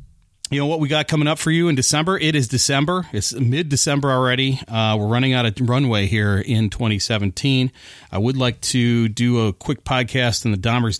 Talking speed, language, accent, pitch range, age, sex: 205 wpm, English, American, 100-130 Hz, 40-59, male